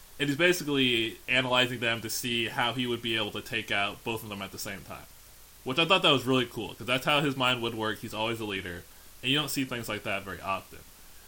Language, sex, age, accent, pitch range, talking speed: English, male, 20-39, American, 100-130 Hz, 260 wpm